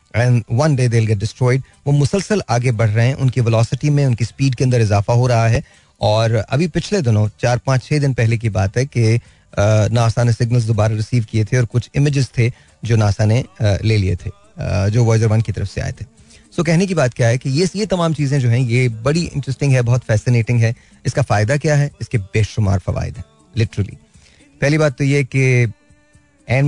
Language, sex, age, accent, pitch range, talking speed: Hindi, male, 30-49, native, 110-140 Hz, 215 wpm